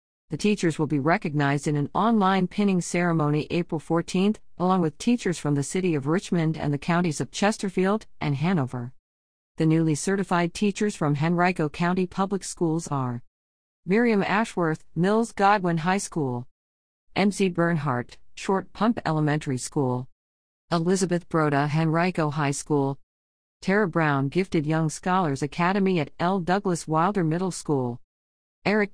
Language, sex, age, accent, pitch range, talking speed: English, female, 50-69, American, 135-185 Hz, 140 wpm